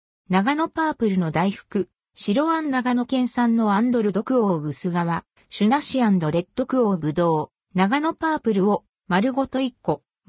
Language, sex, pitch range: Japanese, female, 175-270 Hz